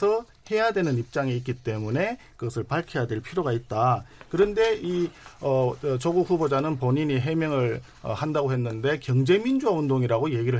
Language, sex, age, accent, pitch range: Korean, male, 50-69, native, 125-175 Hz